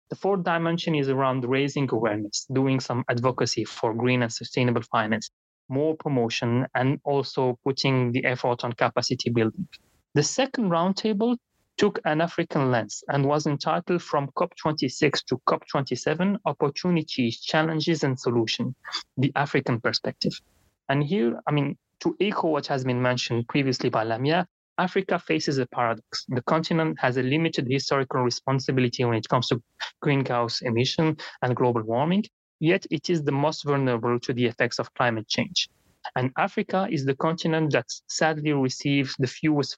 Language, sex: English, male